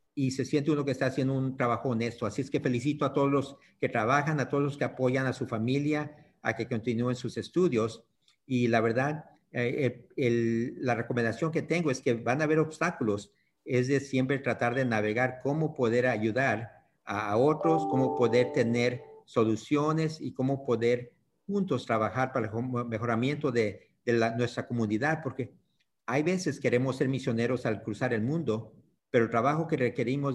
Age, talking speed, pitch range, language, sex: 50-69, 180 wpm, 115-140 Hz, English, male